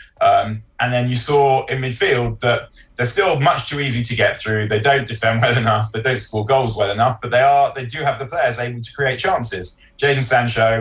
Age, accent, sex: 20-39, British, male